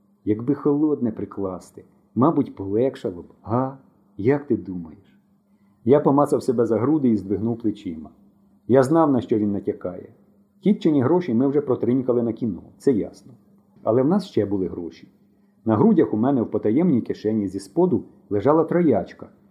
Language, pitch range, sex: Ukrainian, 115-170 Hz, male